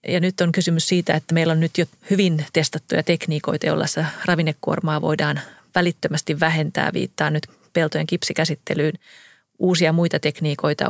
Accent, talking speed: native, 145 wpm